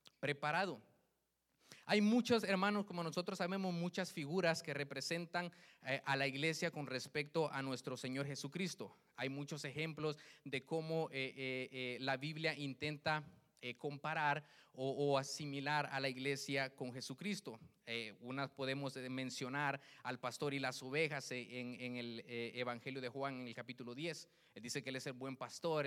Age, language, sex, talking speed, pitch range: 30-49, Spanish, male, 140 wpm, 140-180 Hz